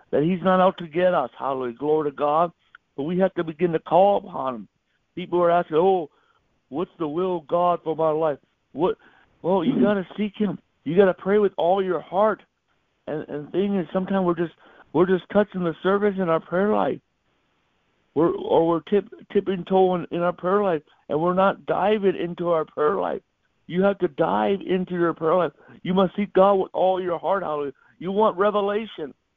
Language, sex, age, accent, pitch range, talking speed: English, male, 60-79, American, 170-205 Hz, 205 wpm